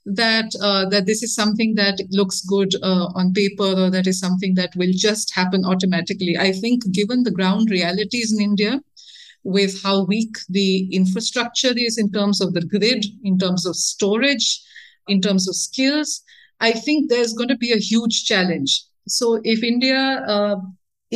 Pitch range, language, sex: 185-225 Hz, English, female